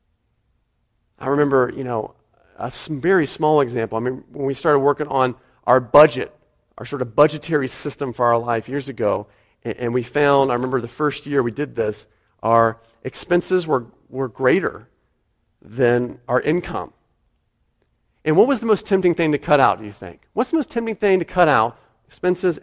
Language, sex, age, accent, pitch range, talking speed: English, male, 40-59, American, 115-150 Hz, 185 wpm